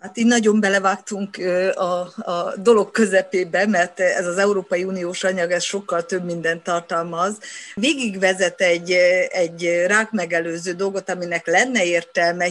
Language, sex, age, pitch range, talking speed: Hungarian, female, 50-69, 175-205 Hz, 135 wpm